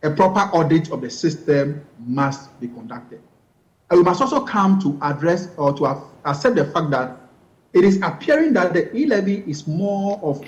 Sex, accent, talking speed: male, Nigerian, 180 wpm